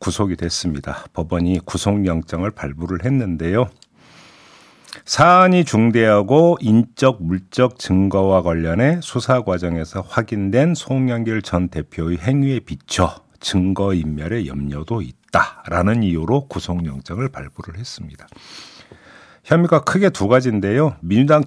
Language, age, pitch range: Korean, 50-69, 85-130 Hz